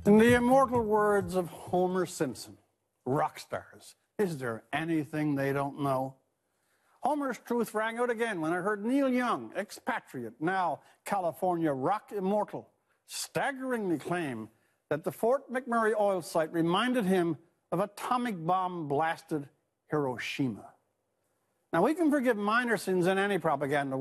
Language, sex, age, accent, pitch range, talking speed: English, male, 60-79, American, 150-215 Hz, 135 wpm